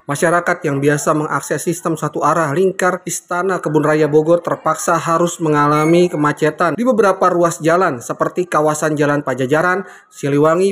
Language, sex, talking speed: Indonesian, male, 140 wpm